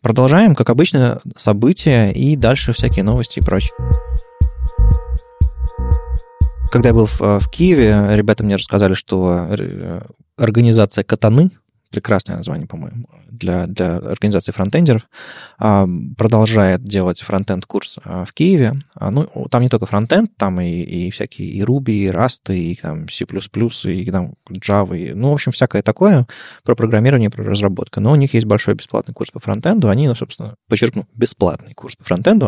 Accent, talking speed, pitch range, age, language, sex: native, 145 wpm, 95-125 Hz, 20-39, Russian, male